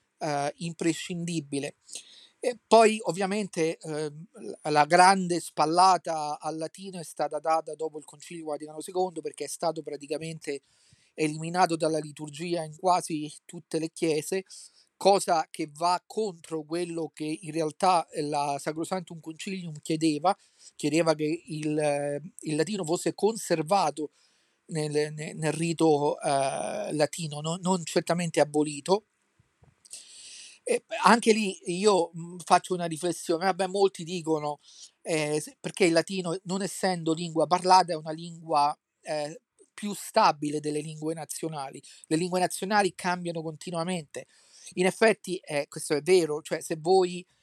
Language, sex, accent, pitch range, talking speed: Italian, male, native, 155-185 Hz, 120 wpm